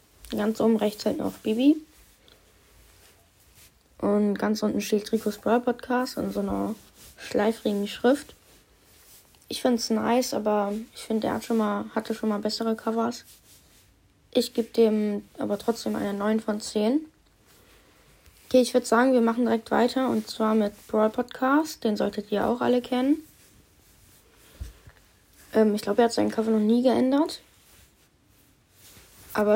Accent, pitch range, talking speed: German, 205-235 Hz, 150 wpm